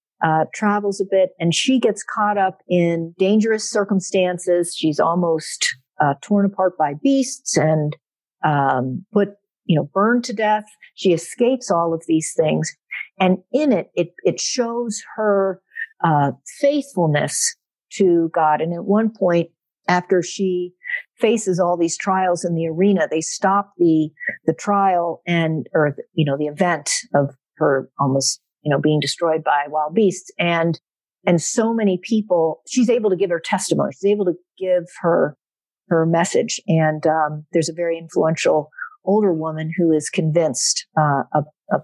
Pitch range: 160-215 Hz